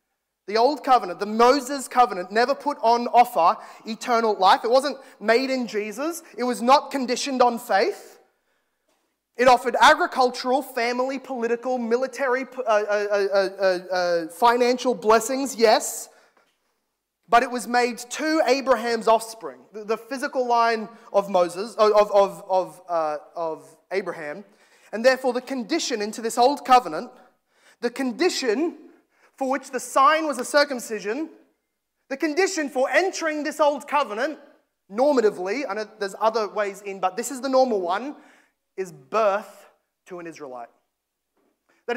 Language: English